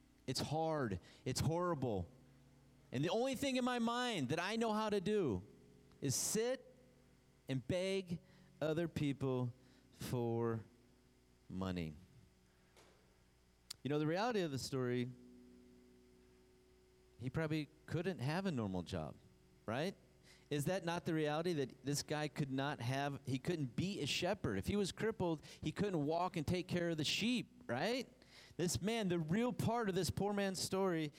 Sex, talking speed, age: male, 155 wpm, 40-59